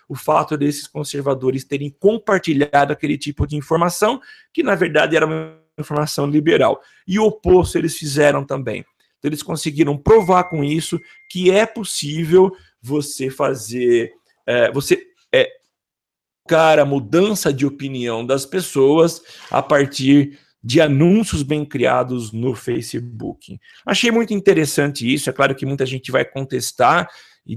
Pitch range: 135-175 Hz